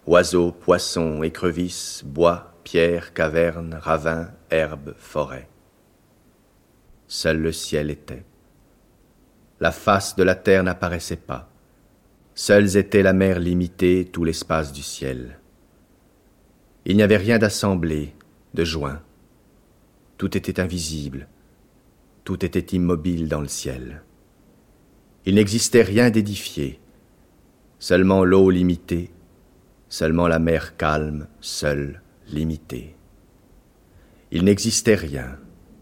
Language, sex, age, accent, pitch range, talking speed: French, male, 50-69, French, 80-95 Hz, 100 wpm